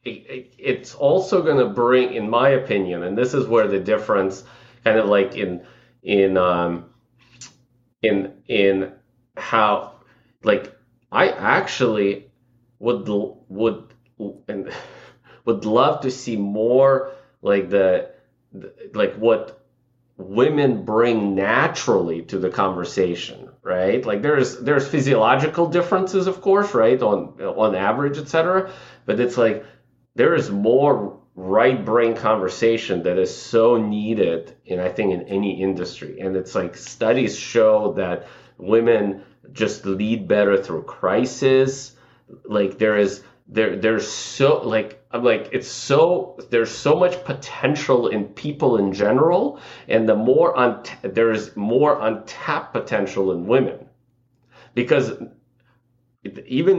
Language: English